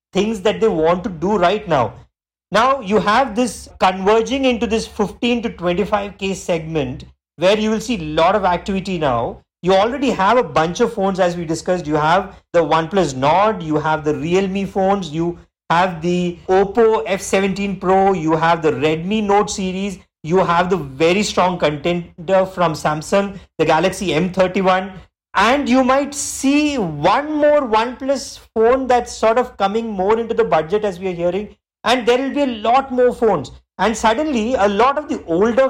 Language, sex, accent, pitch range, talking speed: English, male, Indian, 175-230 Hz, 180 wpm